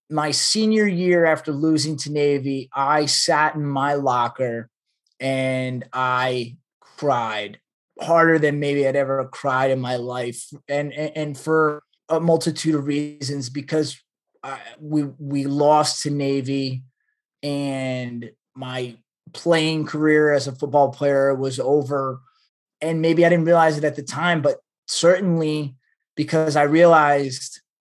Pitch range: 140-165 Hz